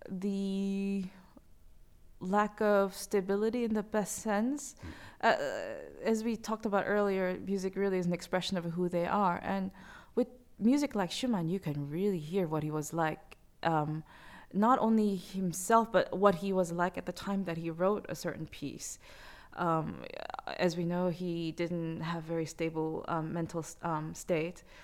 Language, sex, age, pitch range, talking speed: English, female, 20-39, 170-215 Hz, 160 wpm